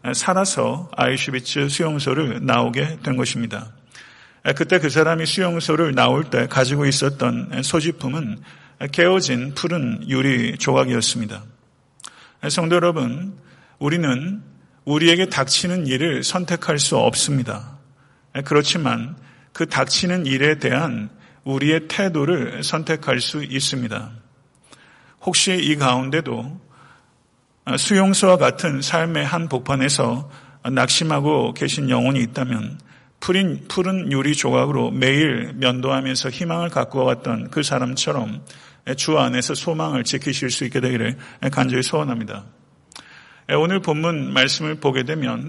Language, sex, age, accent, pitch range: Korean, male, 40-59, native, 130-160 Hz